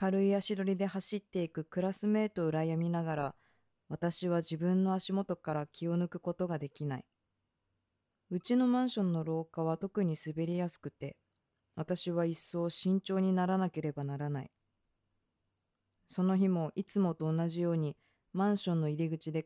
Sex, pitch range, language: female, 120-185 Hz, Japanese